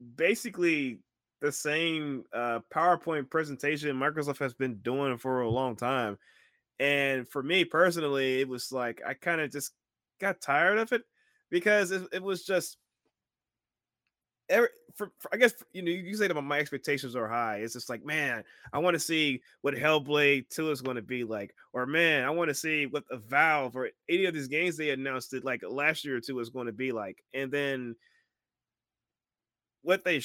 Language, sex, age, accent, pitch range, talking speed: English, male, 20-39, American, 130-170 Hz, 190 wpm